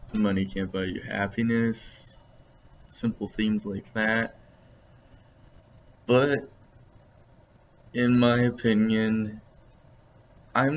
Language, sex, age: English, male, 20-39